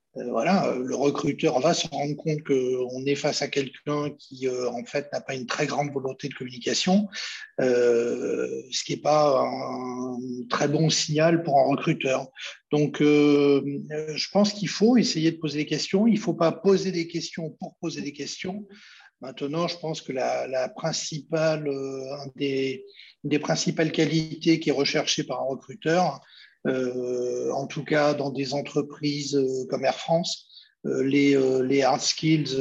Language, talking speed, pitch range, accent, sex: French, 165 wpm, 135-160 Hz, French, male